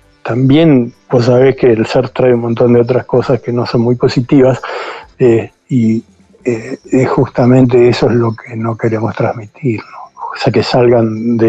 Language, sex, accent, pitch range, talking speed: Spanish, male, Argentinian, 115-125 Hz, 170 wpm